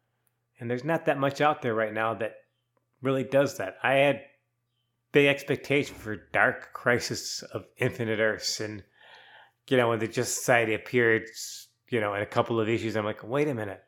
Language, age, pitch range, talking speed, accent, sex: English, 30-49, 110-140 Hz, 185 wpm, American, male